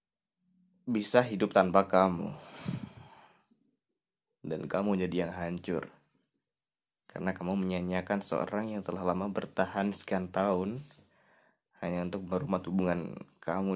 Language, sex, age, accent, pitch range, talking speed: Indonesian, male, 20-39, native, 90-105 Hz, 105 wpm